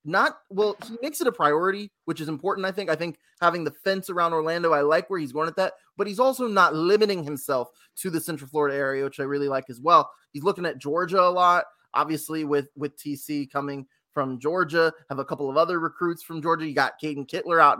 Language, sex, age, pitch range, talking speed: English, male, 20-39, 150-195 Hz, 235 wpm